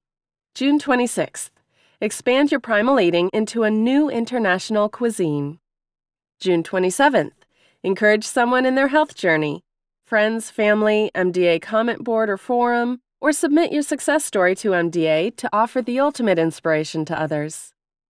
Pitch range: 170-240 Hz